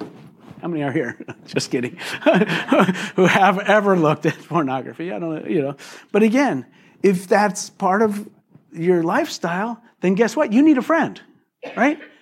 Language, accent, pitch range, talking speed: English, American, 140-195 Hz, 160 wpm